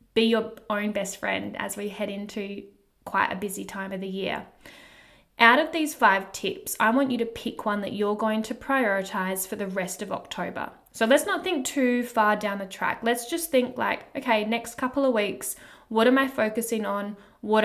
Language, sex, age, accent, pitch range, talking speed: English, female, 10-29, Australian, 210-255 Hz, 205 wpm